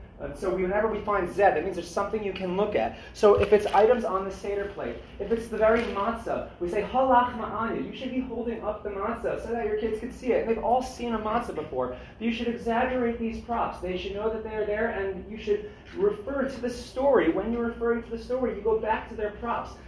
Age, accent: 30-49, American